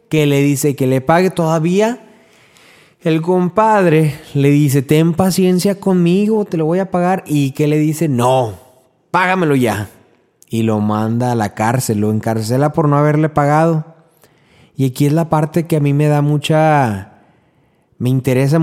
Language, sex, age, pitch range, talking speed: Spanish, male, 30-49, 115-160 Hz, 165 wpm